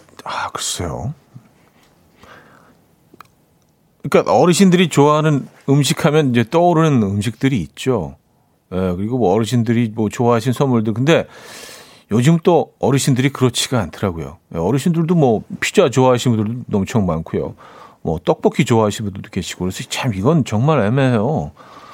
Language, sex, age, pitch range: Korean, male, 40-59, 110-160 Hz